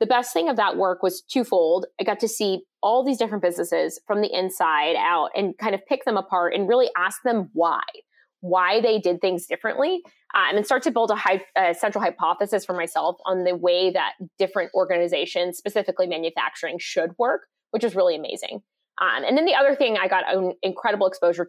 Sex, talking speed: female, 200 wpm